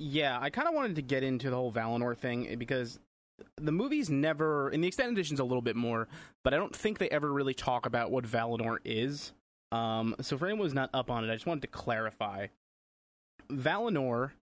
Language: English